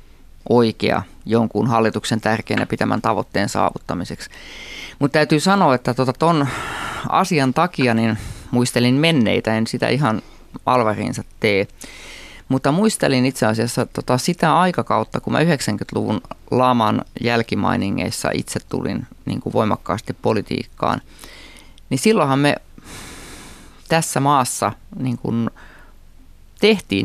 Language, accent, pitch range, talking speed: Finnish, native, 105-140 Hz, 105 wpm